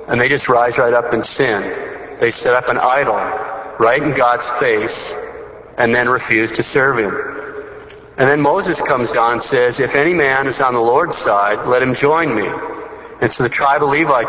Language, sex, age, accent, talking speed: English, male, 50-69, American, 200 wpm